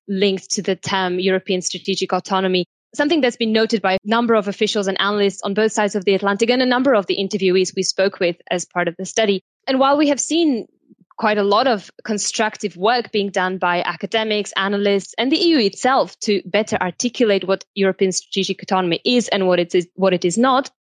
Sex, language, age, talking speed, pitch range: female, English, 20-39, 210 wpm, 185-220 Hz